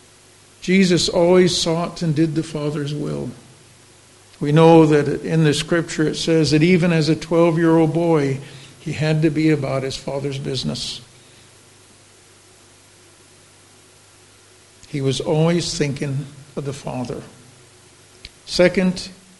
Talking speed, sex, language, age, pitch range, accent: 120 wpm, male, English, 60-79, 125-165 Hz, American